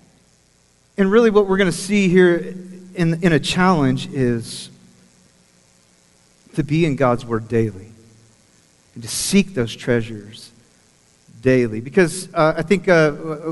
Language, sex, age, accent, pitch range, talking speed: English, male, 40-59, American, 135-190 Hz, 135 wpm